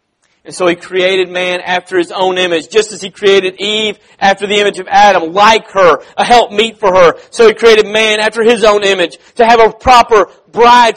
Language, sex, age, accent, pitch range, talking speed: English, male, 40-59, American, 175-225 Hz, 215 wpm